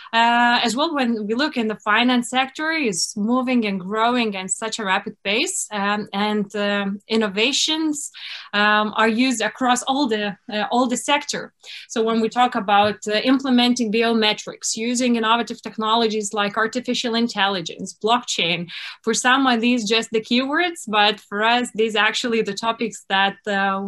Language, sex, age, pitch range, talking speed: English, female, 20-39, 210-245 Hz, 160 wpm